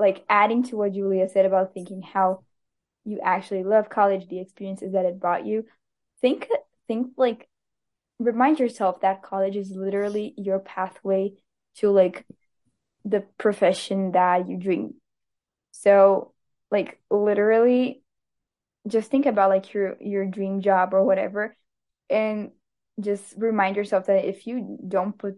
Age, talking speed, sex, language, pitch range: 10-29, 140 wpm, female, English, 190-225 Hz